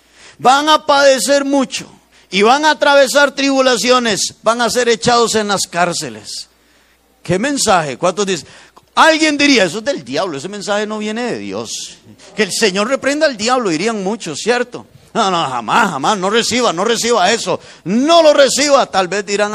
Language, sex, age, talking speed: Spanish, male, 50-69, 170 wpm